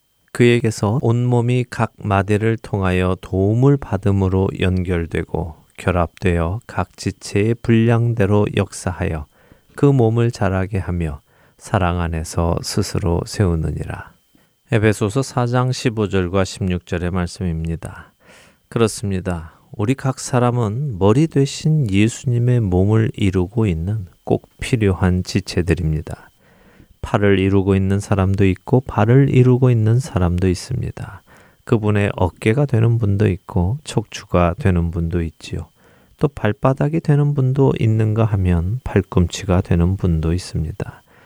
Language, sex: Korean, male